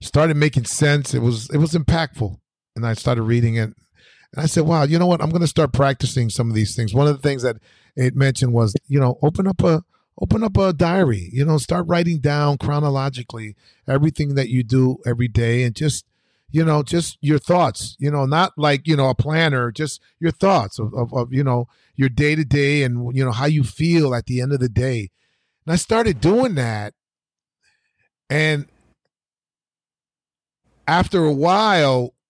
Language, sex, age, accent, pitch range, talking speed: English, male, 40-59, American, 130-175 Hz, 195 wpm